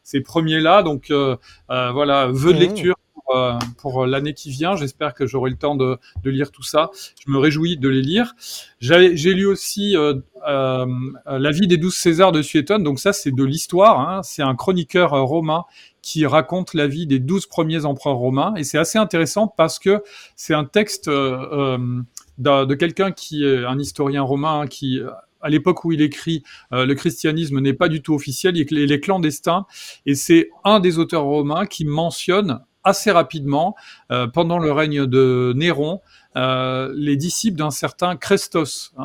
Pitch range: 135-170 Hz